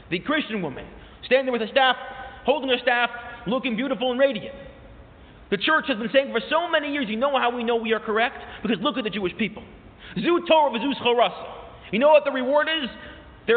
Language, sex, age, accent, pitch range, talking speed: English, male, 30-49, American, 180-270 Hz, 210 wpm